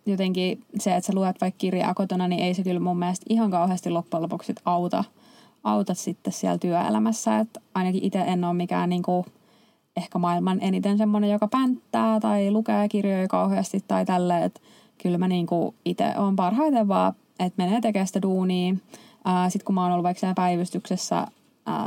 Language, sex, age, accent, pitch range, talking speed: Finnish, female, 20-39, native, 180-225 Hz, 170 wpm